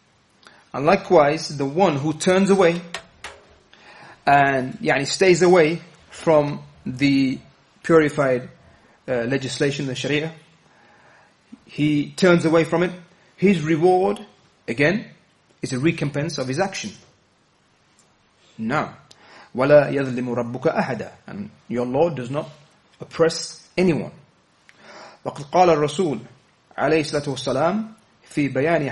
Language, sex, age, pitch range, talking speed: English, male, 30-49, 140-180 Hz, 105 wpm